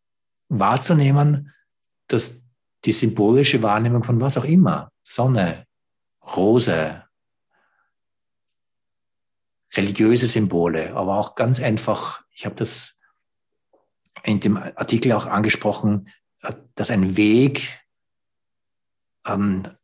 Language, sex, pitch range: English, male, 100-130 Hz